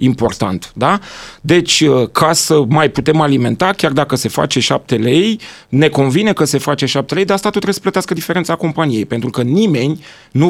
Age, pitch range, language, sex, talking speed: 30-49, 140-175 Hz, Romanian, male, 190 wpm